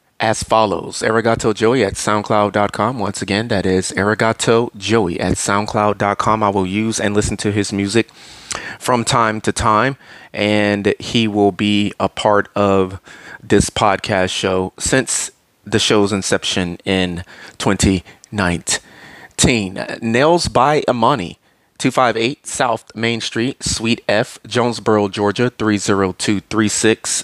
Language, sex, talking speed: English, male, 120 wpm